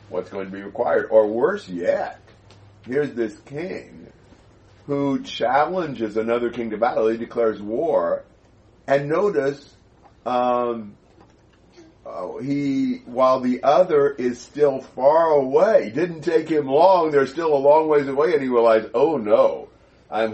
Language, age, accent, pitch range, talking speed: English, 50-69, American, 110-140 Hz, 140 wpm